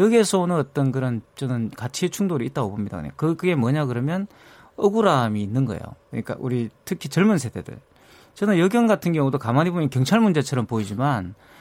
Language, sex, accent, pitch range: Korean, male, native, 125-185 Hz